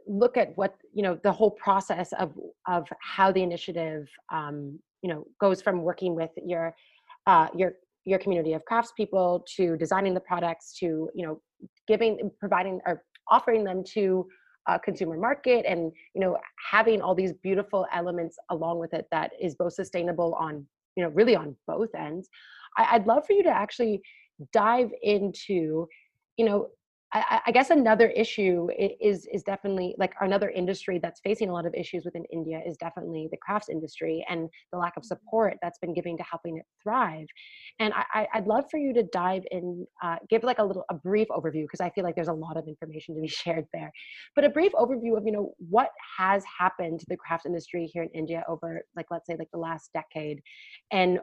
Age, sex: 30-49, female